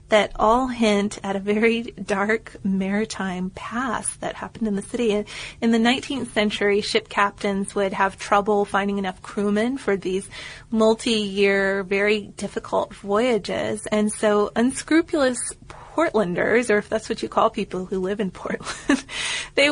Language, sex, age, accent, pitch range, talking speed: English, female, 30-49, American, 200-220 Hz, 145 wpm